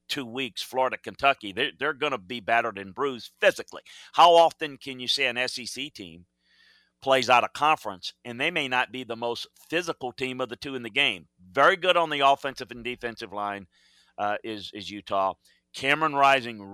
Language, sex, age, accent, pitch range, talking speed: English, male, 40-59, American, 115-145 Hz, 190 wpm